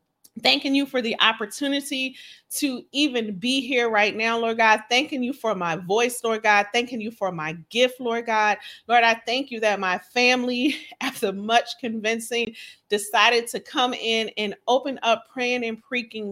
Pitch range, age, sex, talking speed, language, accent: 195-250 Hz, 40-59, female, 175 wpm, English, American